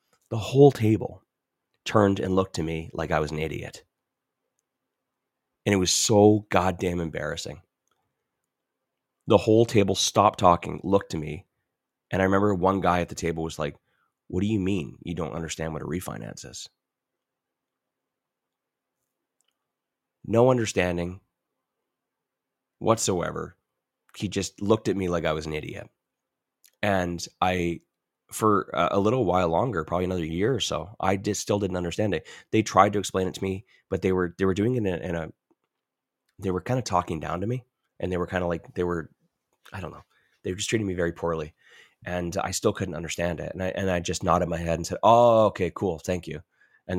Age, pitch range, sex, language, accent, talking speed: 30-49, 85-100 Hz, male, English, American, 185 wpm